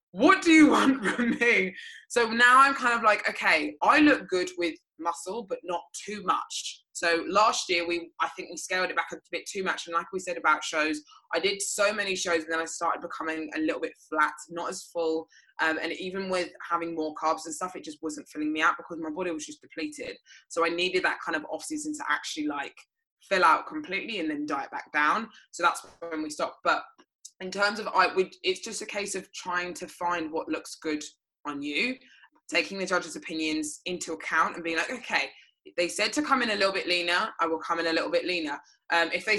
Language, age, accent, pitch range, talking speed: English, 20-39, British, 160-200 Hz, 230 wpm